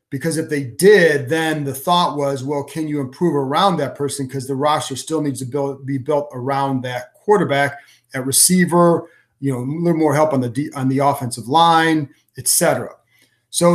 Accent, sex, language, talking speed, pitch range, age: American, male, English, 190 wpm, 140-170 Hz, 40-59